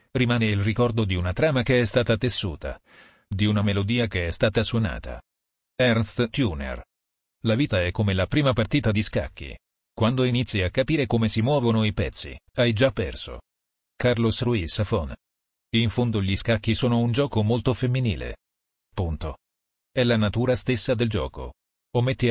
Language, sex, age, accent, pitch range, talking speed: Italian, male, 40-59, native, 95-120 Hz, 165 wpm